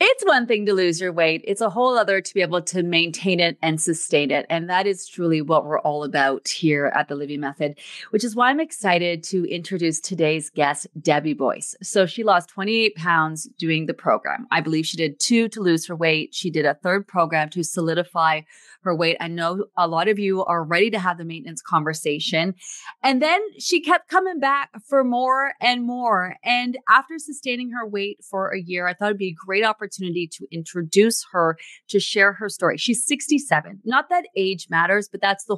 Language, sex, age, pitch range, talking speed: English, female, 30-49, 170-240 Hz, 210 wpm